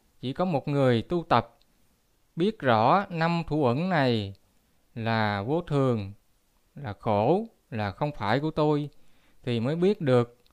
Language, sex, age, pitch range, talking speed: Vietnamese, male, 20-39, 115-175 Hz, 150 wpm